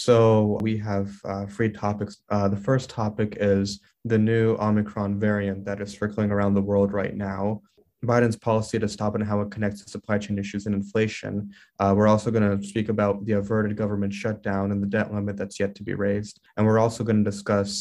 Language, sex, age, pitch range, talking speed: English, male, 20-39, 100-115 Hz, 210 wpm